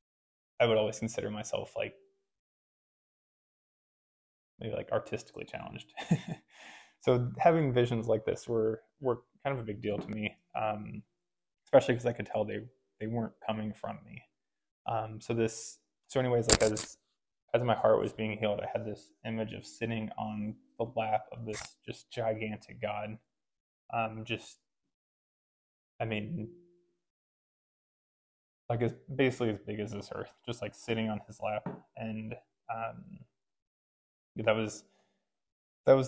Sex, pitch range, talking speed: male, 105-120 Hz, 140 wpm